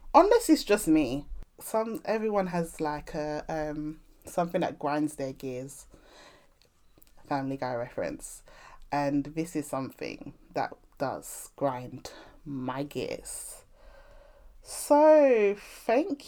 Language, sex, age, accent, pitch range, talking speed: English, female, 20-39, British, 145-195 Hz, 105 wpm